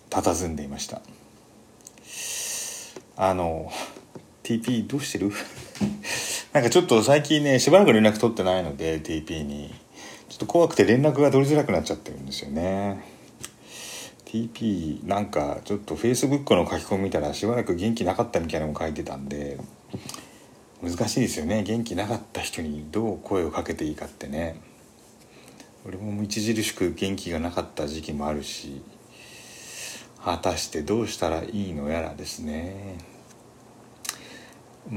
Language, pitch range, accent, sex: Japanese, 80-120 Hz, native, male